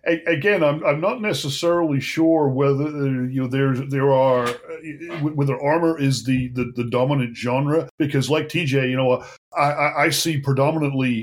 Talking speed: 155 wpm